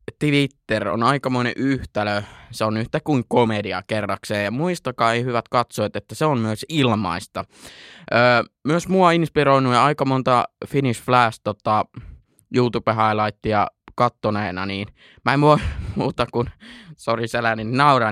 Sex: male